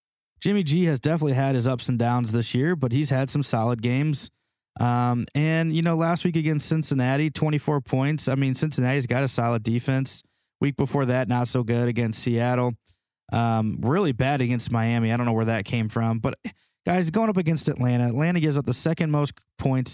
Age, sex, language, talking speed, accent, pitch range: 20-39, male, English, 200 wpm, American, 120-145 Hz